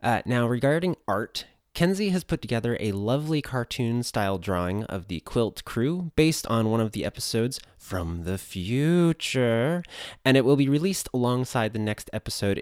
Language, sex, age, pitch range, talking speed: English, male, 20-39, 95-130 Hz, 160 wpm